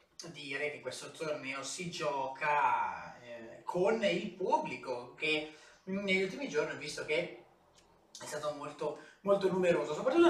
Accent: native